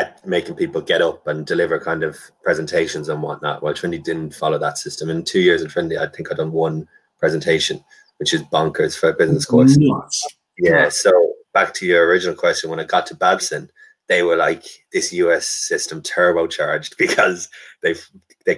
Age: 20-39